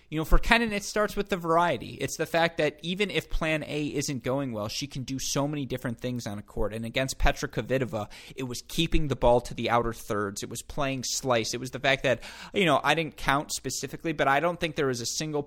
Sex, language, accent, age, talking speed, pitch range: male, English, American, 30-49, 255 wpm, 120-155 Hz